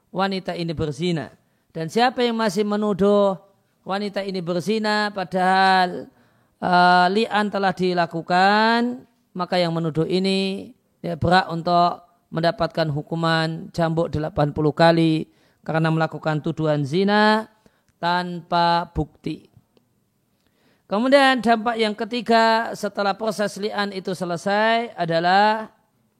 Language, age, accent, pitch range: Indonesian, 40-59, native, 165-210 Hz